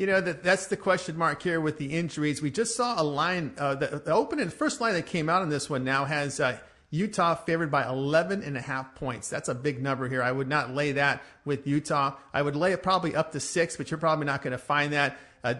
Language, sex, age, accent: English, male, 40-59, American